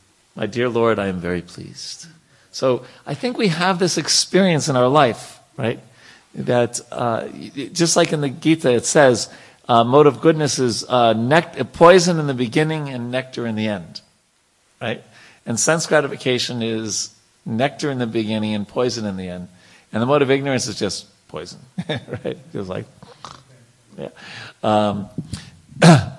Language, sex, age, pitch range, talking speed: English, male, 50-69, 105-140 Hz, 160 wpm